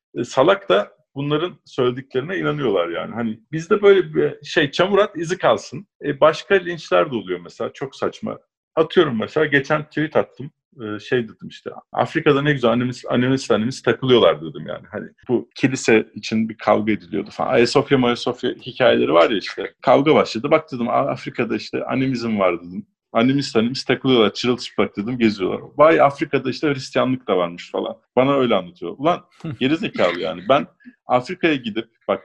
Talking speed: 160 wpm